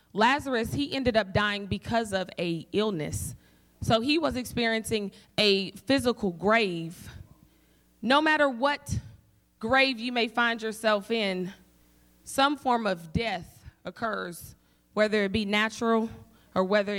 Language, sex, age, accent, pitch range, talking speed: English, female, 20-39, American, 185-235 Hz, 125 wpm